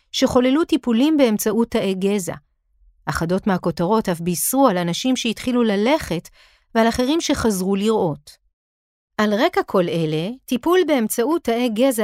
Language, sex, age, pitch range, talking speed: Hebrew, female, 40-59, 180-255 Hz, 125 wpm